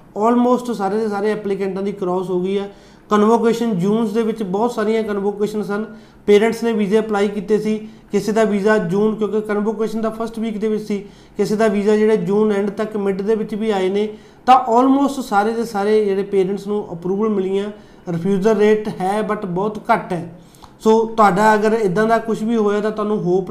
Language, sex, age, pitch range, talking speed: Punjabi, male, 30-49, 195-215 Hz, 195 wpm